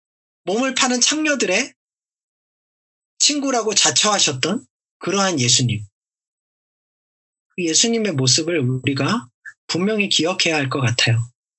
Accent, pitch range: native, 150-225 Hz